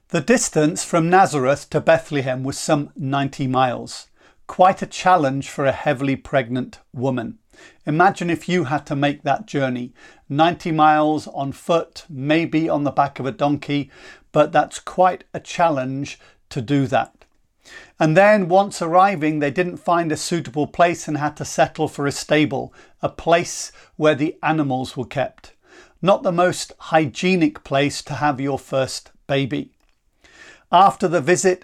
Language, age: English, 40-59